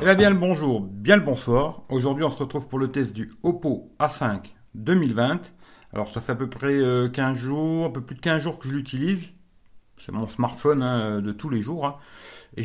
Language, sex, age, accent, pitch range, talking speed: French, male, 50-69, French, 115-145 Hz, 220 wpm